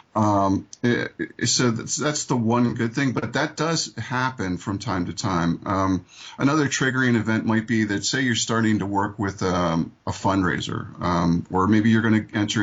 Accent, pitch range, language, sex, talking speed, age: American, 95-115 Hz, English, male, 185 wpm, 50-69